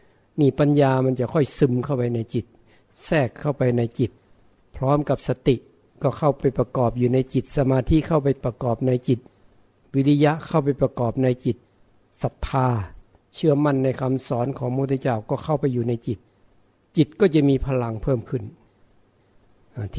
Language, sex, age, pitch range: Thai, male, 60-79, 115-140 Hz